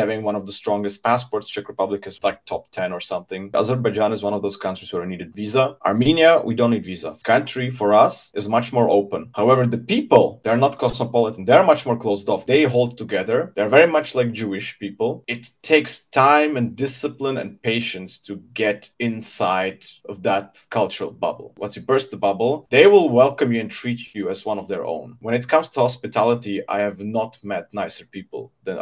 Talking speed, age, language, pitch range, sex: 205 wpm, 30-49, English, 105-130 Hz, male